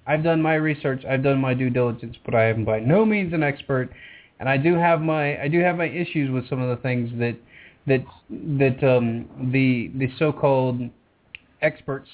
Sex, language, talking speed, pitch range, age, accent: male, English, 205 wpm, 125-145 Hz, 30-49, American